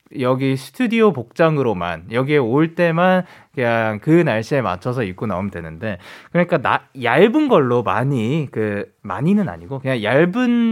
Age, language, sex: 20-39, Korean, male